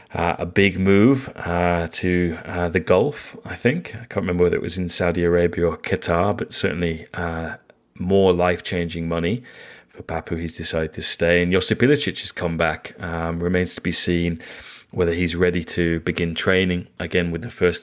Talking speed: 180 wpm